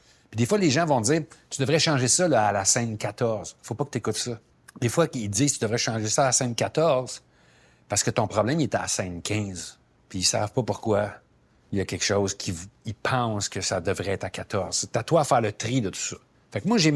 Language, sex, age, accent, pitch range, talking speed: French, male, 60-79, Canadian, 100-130 Hz, 270 wpm